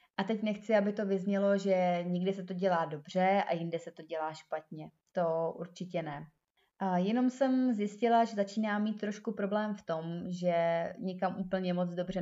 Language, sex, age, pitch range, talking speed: Czech, female, 20-39, 170-195 Hz, 180 wpm